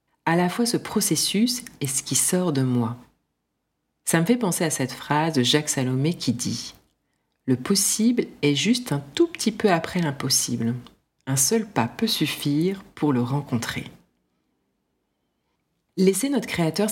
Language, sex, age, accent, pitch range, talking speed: French, female, 40-59, French, 130-180 Hz, 155 wpm